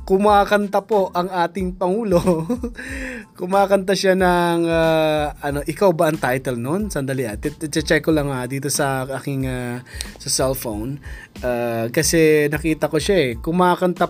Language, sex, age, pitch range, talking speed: Filipino, male, 20-39, 135-180 Hz, 135 wpm